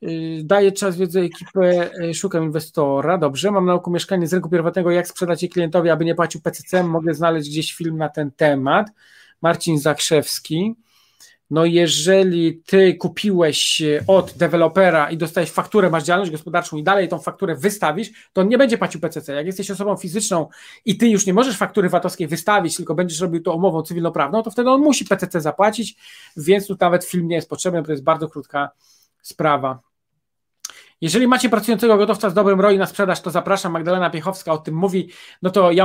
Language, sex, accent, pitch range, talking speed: Polish, male, native, 165-195 Hz, 180 wpm